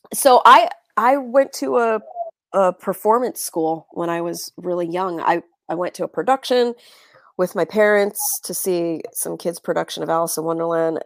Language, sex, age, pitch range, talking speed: English, female, 30-49, 155-205 Hz, 175 wpm